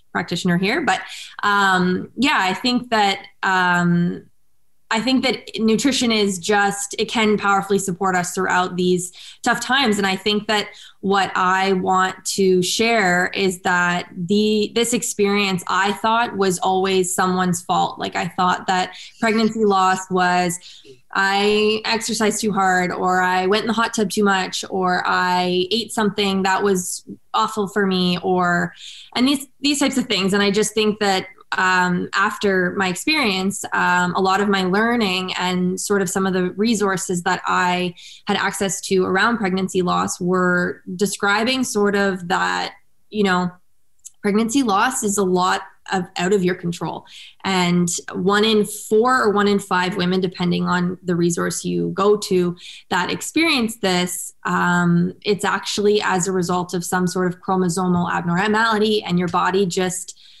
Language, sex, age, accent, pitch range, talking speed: English, female, 20-39, American, 180-210 Hz, 160 wpm